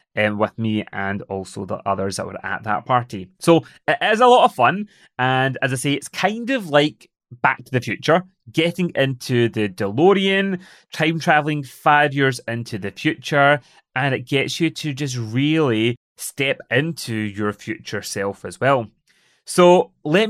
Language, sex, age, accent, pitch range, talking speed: English, male, 30-49, British, 115-160 Hz, 170 wpm